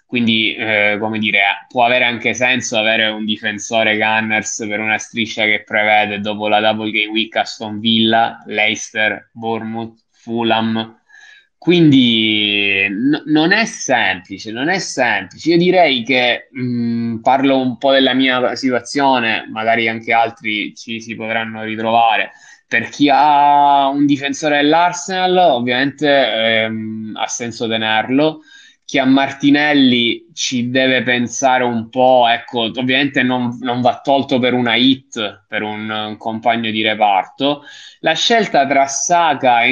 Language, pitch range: Italian, 110-140 Hz